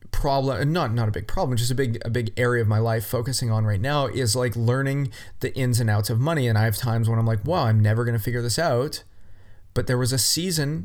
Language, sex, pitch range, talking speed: English, male, 110-130 Hz, 270 wpm